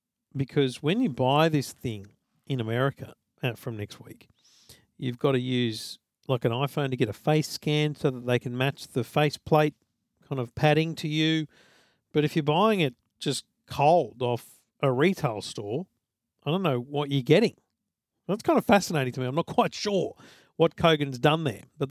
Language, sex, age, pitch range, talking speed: English, male, 50-69, 125-155 Hz, 185 wpm